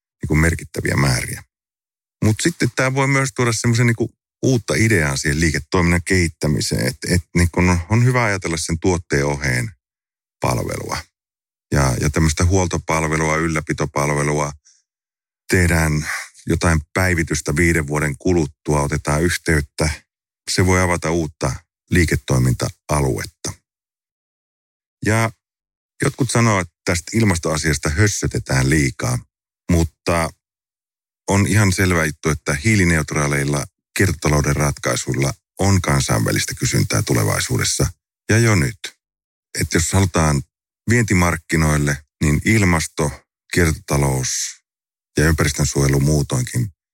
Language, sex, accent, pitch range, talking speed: English, male, Finnish, 75-95 Hz, 95 wpm